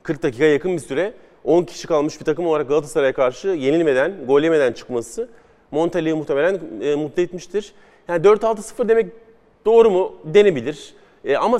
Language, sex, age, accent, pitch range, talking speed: Turkish, male, 40-59, native, 150-215 Hz, 150 wpm